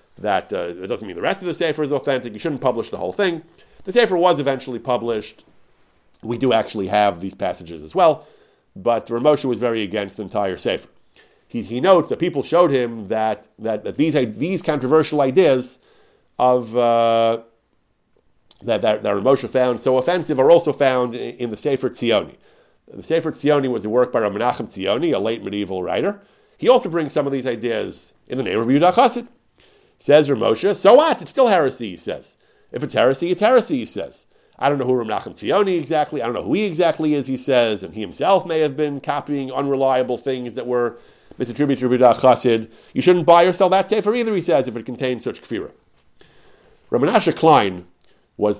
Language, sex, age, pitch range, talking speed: English, male, 40-59, 115-160 Hz, 195 wpm